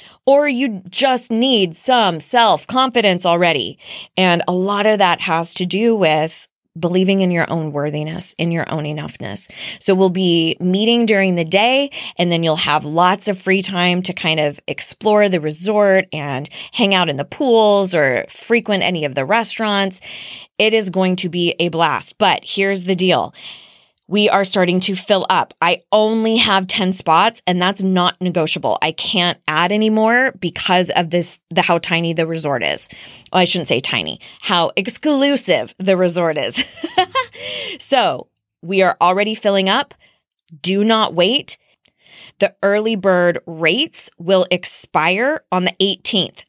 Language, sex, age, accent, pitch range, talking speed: English, female, 20-39, American, 170-210 Hz, 165 wpm